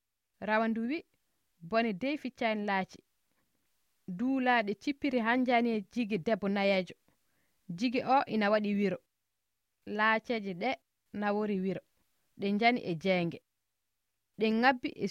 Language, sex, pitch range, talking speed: French, female, 185-245 Hz, 120 wpm